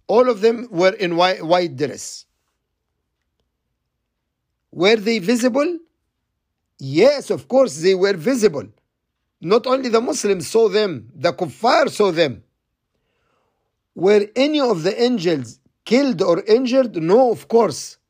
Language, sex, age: English, male, 50-69